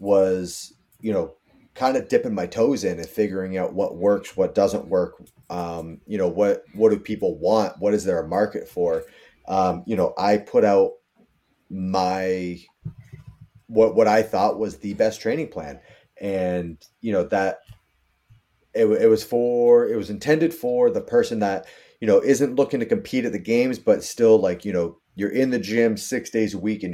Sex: male